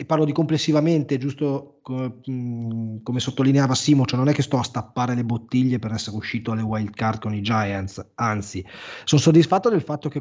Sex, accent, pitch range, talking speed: male, native, 125-155 Hz, 195 wpm